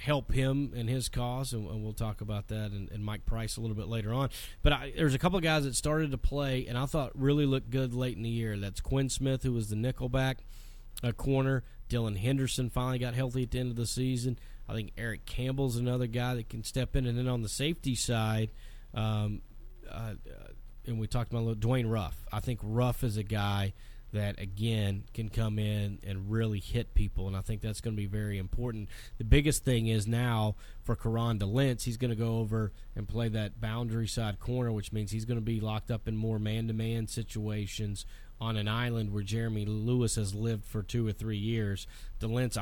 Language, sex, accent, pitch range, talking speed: English, male, American, 105-125 Hz, 220 wpm